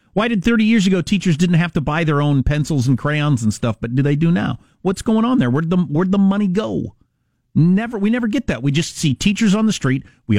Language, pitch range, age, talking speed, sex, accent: English, 105-160 Hz, 40-59, 260 wpm, male, American